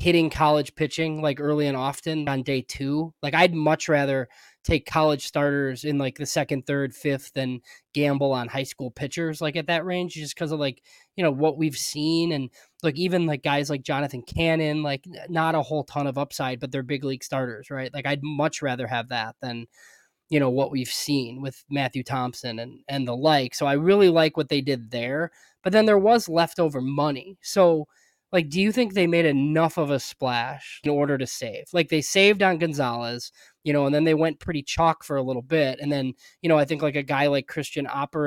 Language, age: English, 20-39